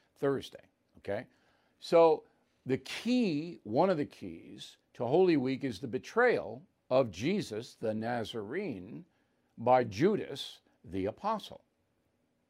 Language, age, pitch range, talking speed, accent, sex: English, 50-69, 135-165 Hz, 110 wpm, American, male